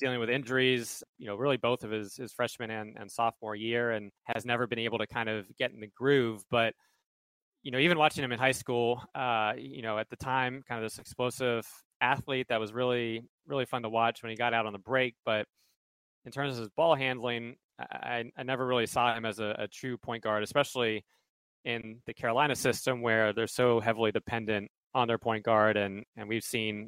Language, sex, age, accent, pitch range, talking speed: English, male, 20-39, American, 110-125 Hz, 220 wpm